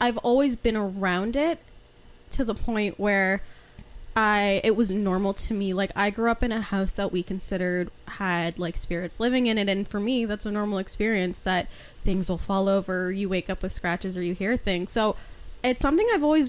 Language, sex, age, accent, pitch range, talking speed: English, female, 10-29, American, 190-235 Hz, 205 wpm